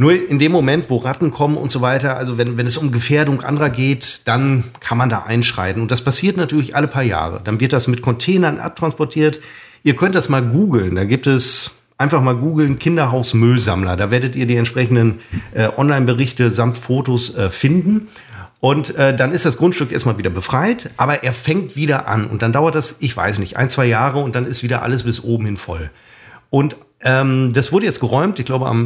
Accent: German